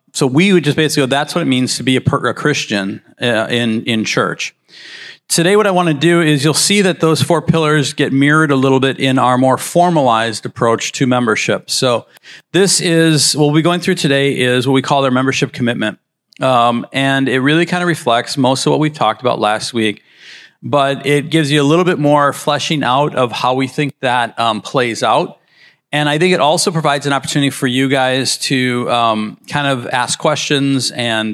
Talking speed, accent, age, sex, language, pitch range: 215 wpm, American, 40-59, male, English, 125-155 Hz